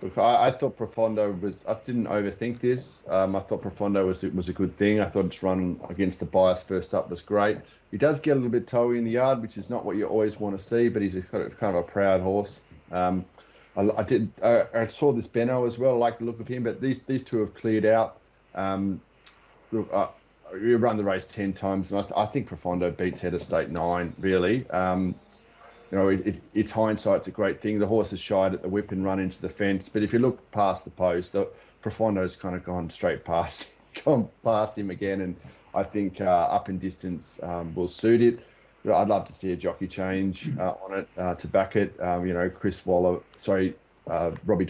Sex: male